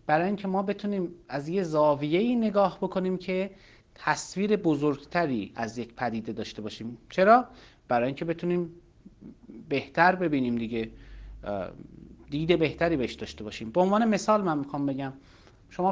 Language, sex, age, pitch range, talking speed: Persian, male, 30-49, 130-190 Hz, 135 wpm